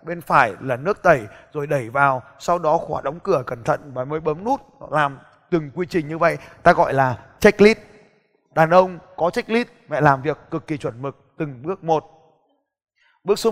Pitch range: 150-180 Hz